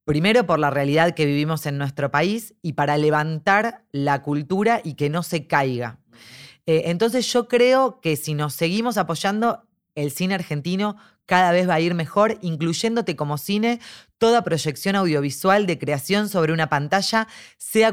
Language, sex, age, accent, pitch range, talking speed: Spanish, female, 20-39, Argentinian, 145-190 Hz, 160 wpm